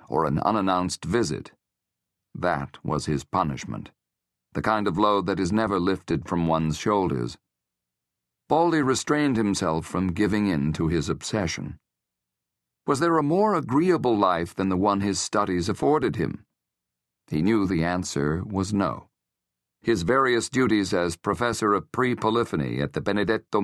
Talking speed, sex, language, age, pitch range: 145 wpm, male, English, 50-69, 85-115 Hz